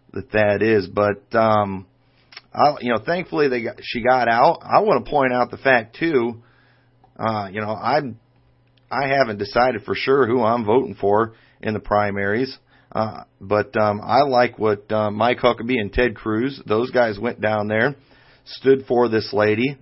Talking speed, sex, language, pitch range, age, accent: 175 wpm, male, English, 105-130 Hz, 40-59, American